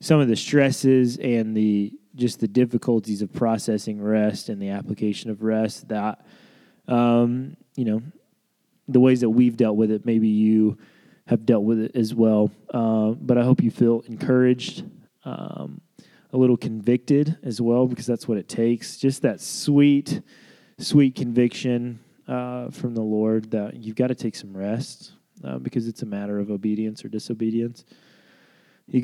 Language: English